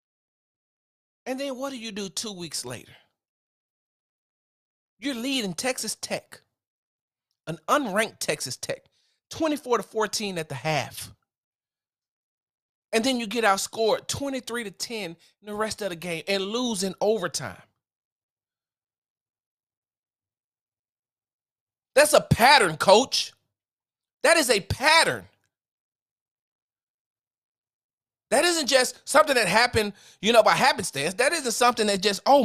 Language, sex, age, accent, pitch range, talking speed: English, male, 40-59, American, 155-250 Hz, 120 wpm